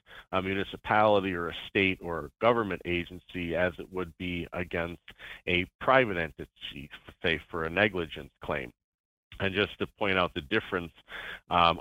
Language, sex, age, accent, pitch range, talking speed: English, male, 40-59, American, 85-95 Hz, 145 wpm